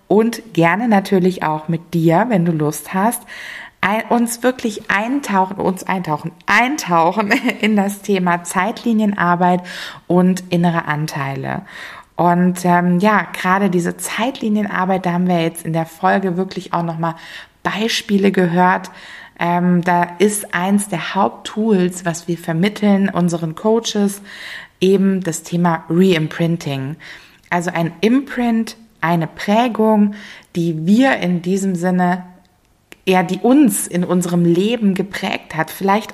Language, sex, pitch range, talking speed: German, female, 170-210 Hz, 125 wpm